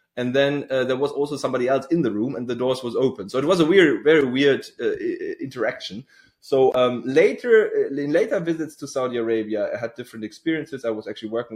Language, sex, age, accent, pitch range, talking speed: English, male, 20-39, German, 110-140 Hz, 220 wpm